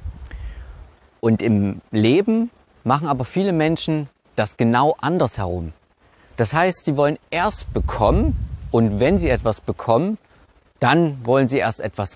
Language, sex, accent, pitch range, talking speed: German, male, German, 95-140 Hz, 135 wpm